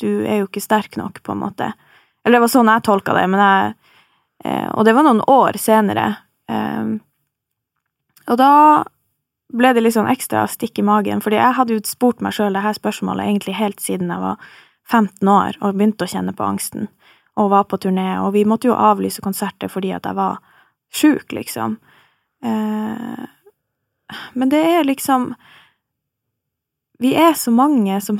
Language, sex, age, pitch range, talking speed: English, female, 20-39, 195-245 Hz, 185 wpm